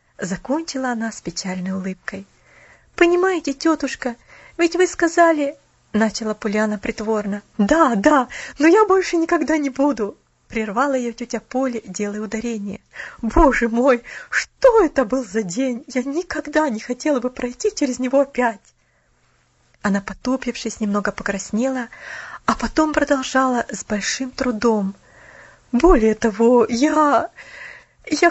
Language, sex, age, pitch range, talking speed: Russian, female, 20-39, 225-320 Hz, 120 wpm